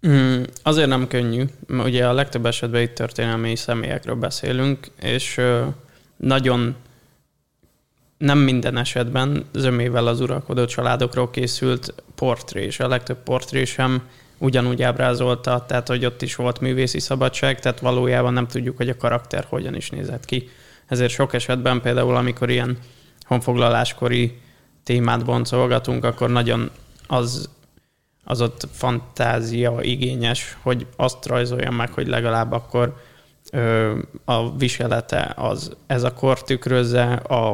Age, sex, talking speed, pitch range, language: 20-39, male, 120 wpm, 120-125 Hz, English